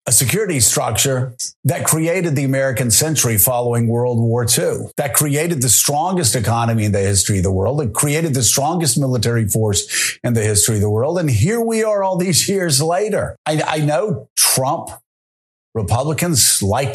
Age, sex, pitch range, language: 50-69, male, 135-205 Hz, English